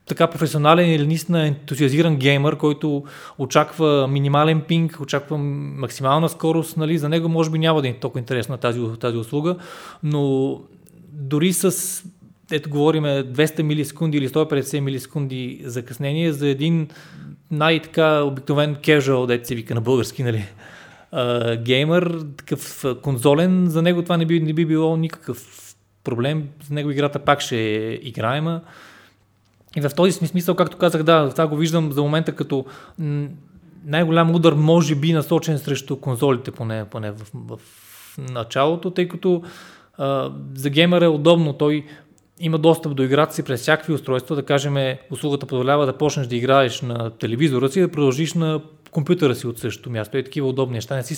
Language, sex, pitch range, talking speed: Bulgarian, male, 130-160 Hz, 160 wpm